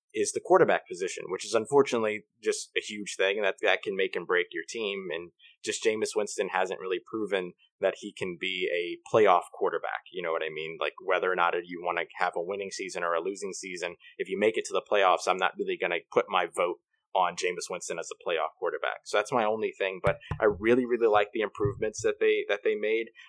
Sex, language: male, English